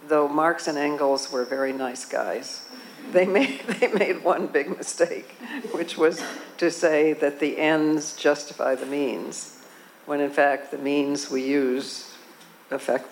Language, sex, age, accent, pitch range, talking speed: French, female, 60-79, American, 135-165 Hz, 145 wpm